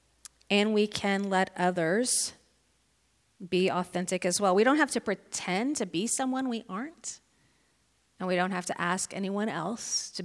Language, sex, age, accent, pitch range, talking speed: English, female, 40-59, American, 180-240 Hz, 165 wpm